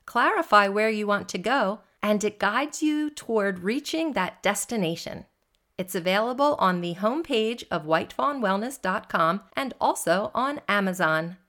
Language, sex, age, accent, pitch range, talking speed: English, female, 40-59, American, 175-225 Hz, 130 wpm